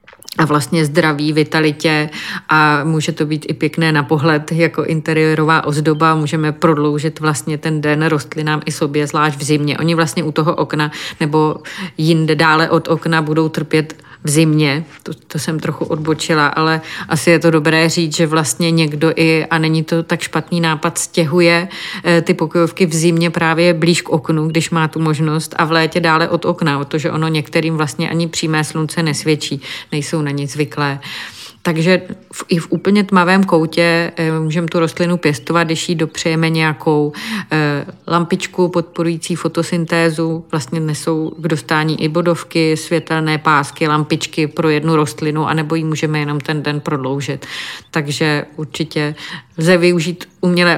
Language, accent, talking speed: Czech, native, 155 wpm